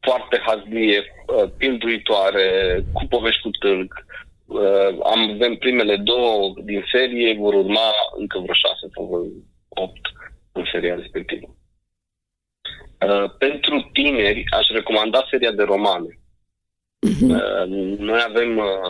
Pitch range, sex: 100-130 Hz, male